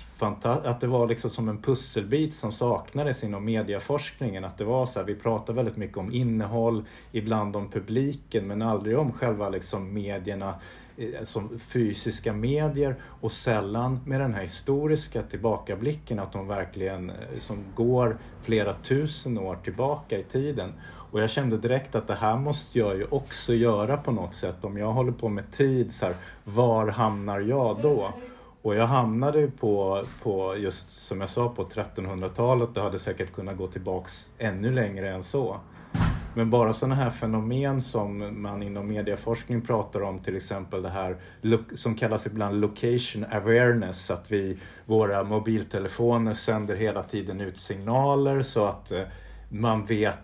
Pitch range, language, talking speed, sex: 100-120 Hz, Swedish, 165 wpm, male